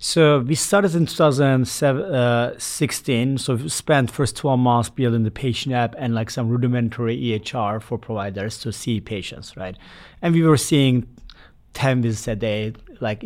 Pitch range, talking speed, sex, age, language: 120-155 Hz, 165 wpm, male, 30-49, English